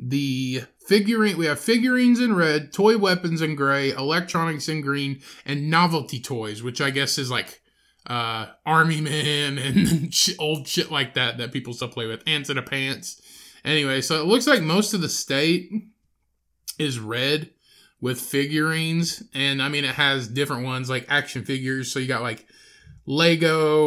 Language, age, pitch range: English, 20-39, 125-155 Hz